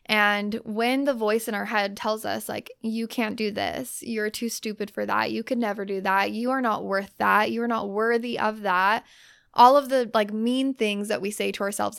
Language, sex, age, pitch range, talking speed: English, female, 10-29, 205-250 Hz, 225 wpm